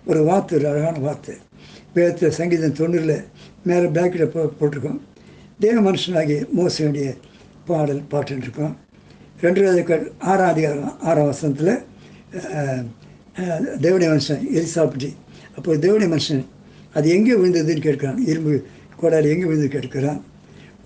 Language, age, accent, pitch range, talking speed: Tamil, 60-79, native, 150-185 Hz, 110 wpm